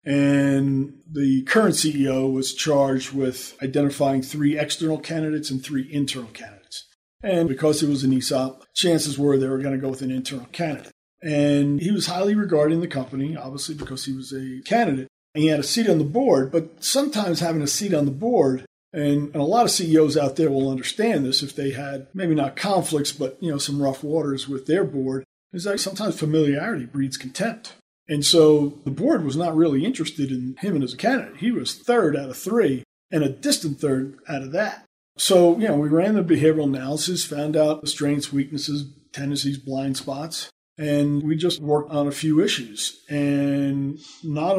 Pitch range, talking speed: 140-165 Hz, 195 wpm